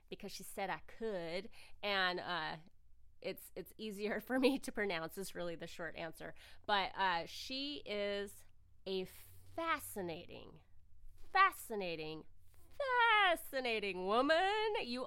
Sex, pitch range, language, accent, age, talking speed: female, 170-230 Hz, English, American, 30-49, 115 wpm